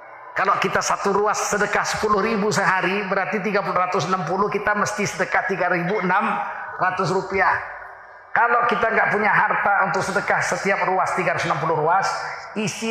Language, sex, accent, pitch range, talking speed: Indonesian, male, native, 175-205 Hz, 125 wpm